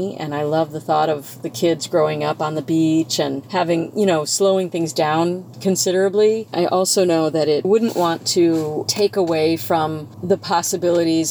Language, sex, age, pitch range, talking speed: English, female, 40-59, 155-185 Hz, 180 wpm